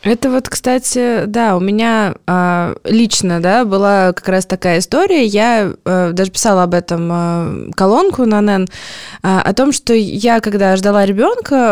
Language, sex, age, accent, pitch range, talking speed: Russian, female, 20-39, native, 175-225 Hz, 165 wpm